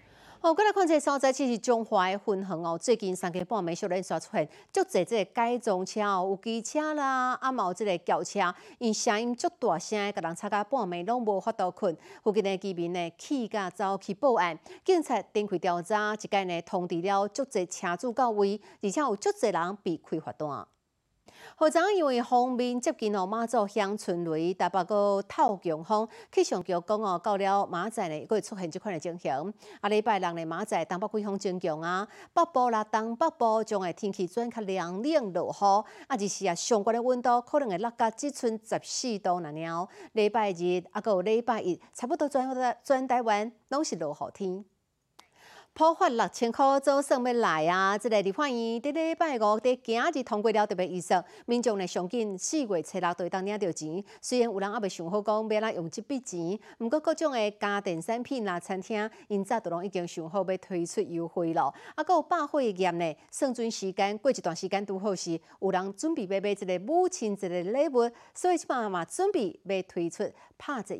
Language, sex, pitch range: Chinese, female, 185-245 Hz